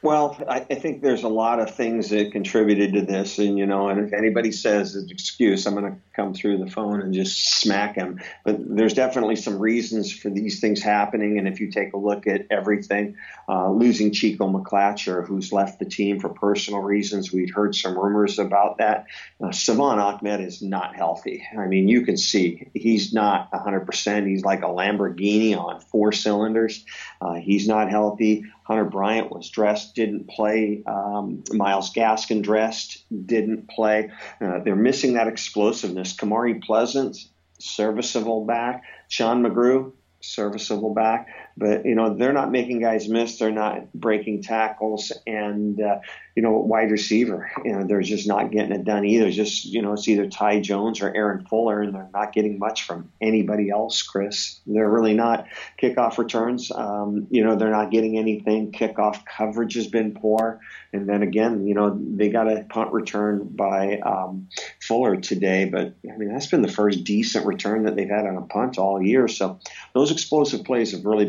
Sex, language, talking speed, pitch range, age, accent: male, English, 185 wpm, 100-110 Hz, 50-69, American